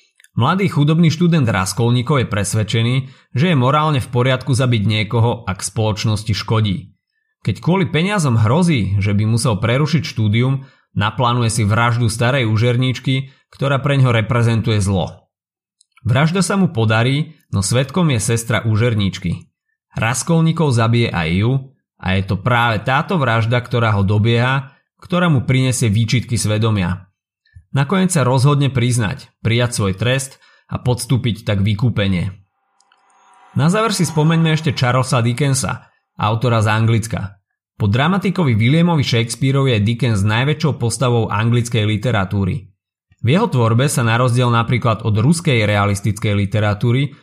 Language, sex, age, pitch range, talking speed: Slovak, male, 30-49, 110-140 Hz, 130 wpm